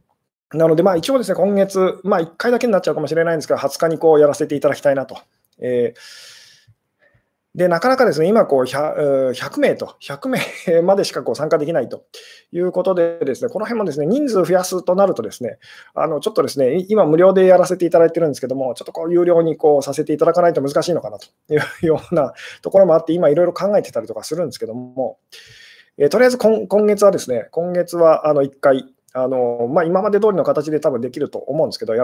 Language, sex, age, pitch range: Japanese, male, 20-39, 150-210 Hz